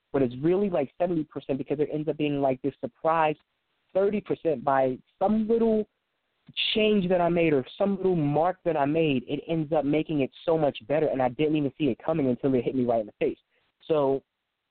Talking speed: 220 wpm